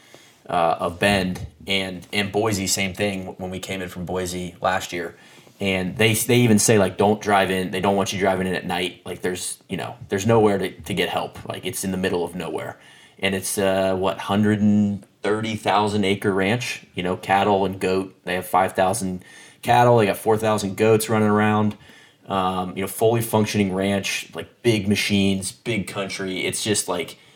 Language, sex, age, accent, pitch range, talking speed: English, male, 30-49, American, 95-105 Hz, 190 wpm